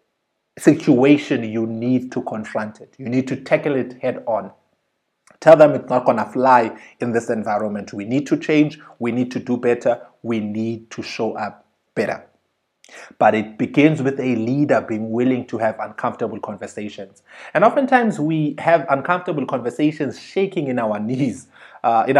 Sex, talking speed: male, 170 wpm